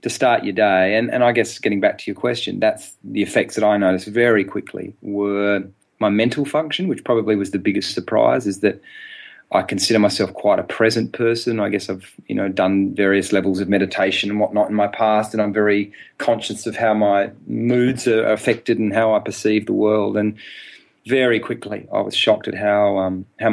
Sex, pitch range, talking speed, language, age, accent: male, 105-115 Hz, 205 wpm, English, 30-49, Australian